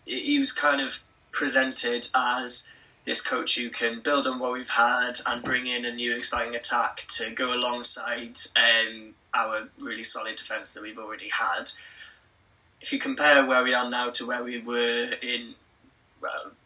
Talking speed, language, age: 170 wpm, English, 20-39